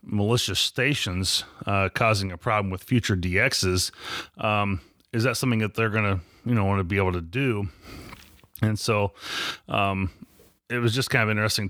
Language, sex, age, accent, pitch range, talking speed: English, male, 30-49, American, 90-115 Hz, 170 wpm